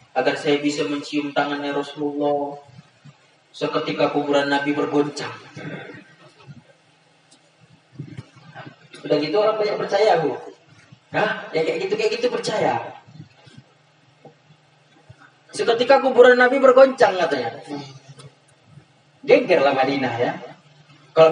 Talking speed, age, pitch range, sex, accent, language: 85 wpm, 30-49, 145-210 Hz, male, native, Indonesian